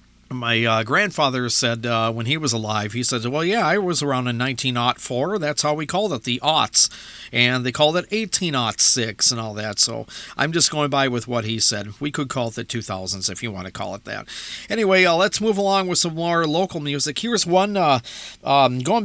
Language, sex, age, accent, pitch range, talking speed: English, male, 50-69, American, 120-170 Hz, 220 wpm